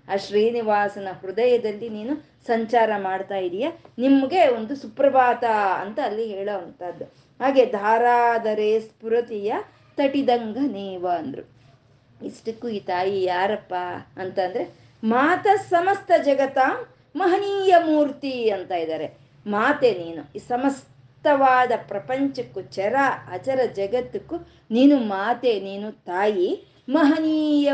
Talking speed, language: 95 wpm, Kannada